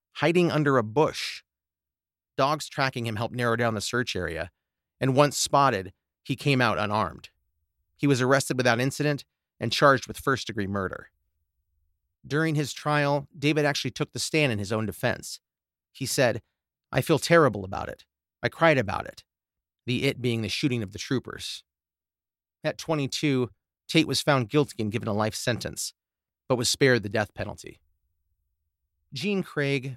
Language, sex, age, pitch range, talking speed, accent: English, male, 30-49, 95-140 Hz, 160 wpm, American